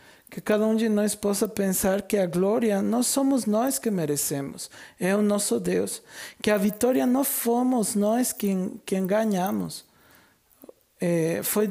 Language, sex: Portuguese, male